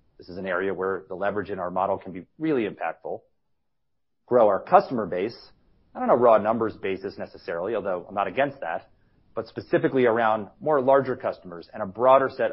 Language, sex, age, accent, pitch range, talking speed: English, male, 30-49, American, 100-145 Hz, 190 wpm